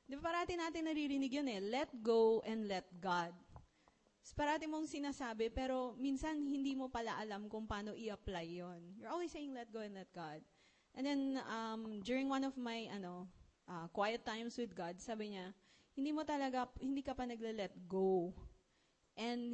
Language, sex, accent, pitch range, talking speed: English, female, Filipino, 195-250 Hz, 180 wpm